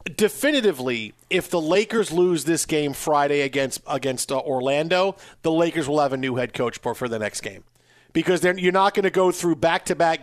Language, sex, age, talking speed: English, male, 40-59, 195 wpm